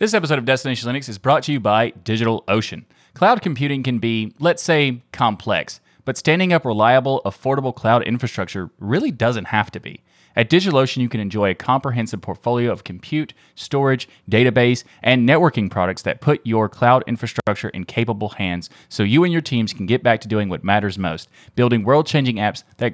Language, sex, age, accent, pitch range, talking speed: English, male, 30-49, American, 105-135 Hz, 185 wpm